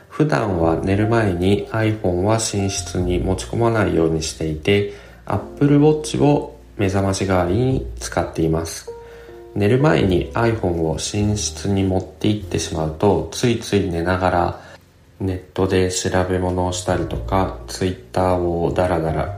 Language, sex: Japanese, male